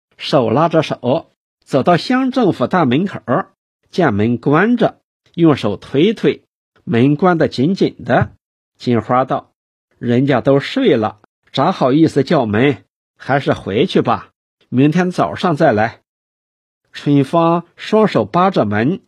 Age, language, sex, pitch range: 50-69, Chinese, male, 125-190 Hz